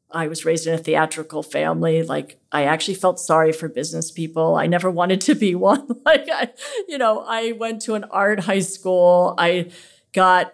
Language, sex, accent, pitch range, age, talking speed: English, female, American, 175-220 Hz, 50-69, 190 wpm